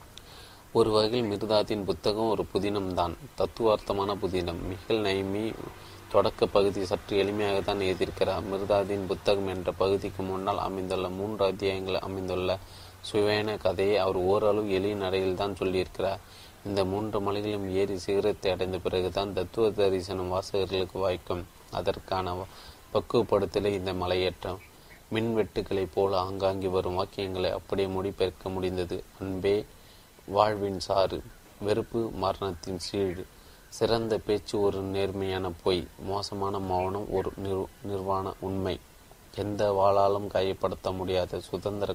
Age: 30-49